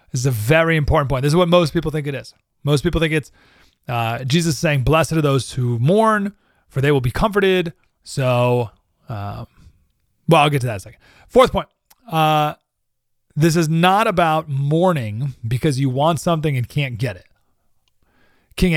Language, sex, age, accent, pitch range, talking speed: English, male, 30-49, American, 115-165 Hz, 185 wpm